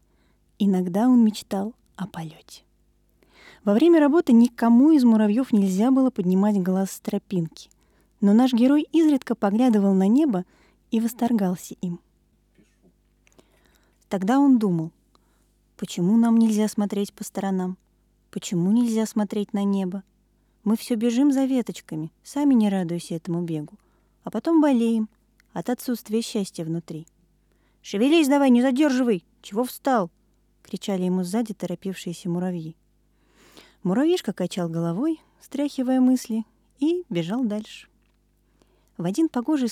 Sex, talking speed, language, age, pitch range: female, 120 wpm, Russian, 20-39, 185-245 Hz